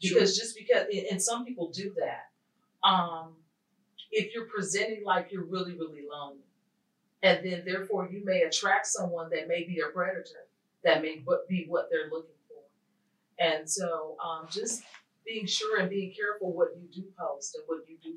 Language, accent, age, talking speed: English, American, 40-59, 175 wpm